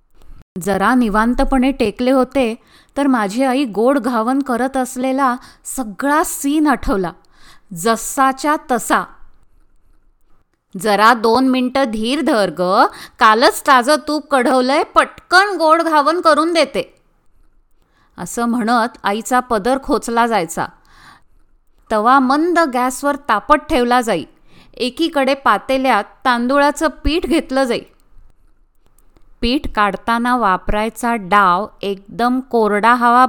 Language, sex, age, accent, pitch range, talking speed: Marathi, female, 20-39, native, 230-285 Hz, 95 wpm